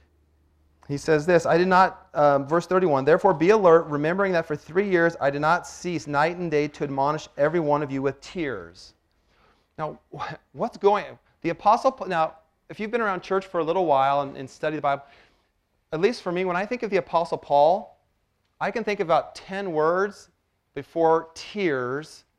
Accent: American